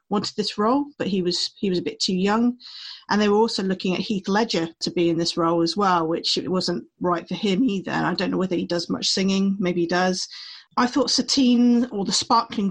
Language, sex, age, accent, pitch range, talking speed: English, female, 40-59, British, 180-240 Hz, 235 wpm